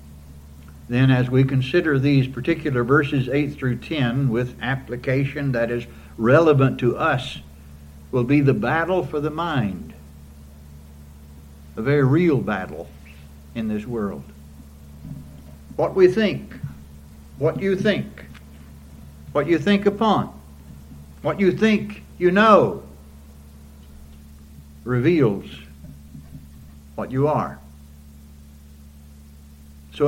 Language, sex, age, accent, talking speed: English, male, 60-79, American, 100 wpm